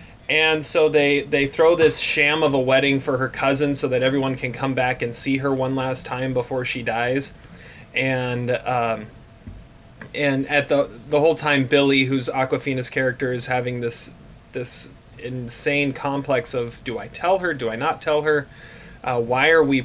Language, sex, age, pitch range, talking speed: English, male, 30-49, 125-150 Hz, 180 wpm